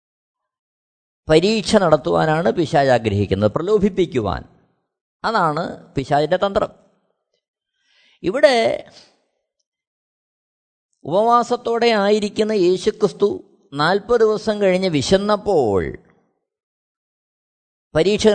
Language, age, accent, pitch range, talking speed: Malayalam, 20-39, native, 170-235 Hz, 55 wpm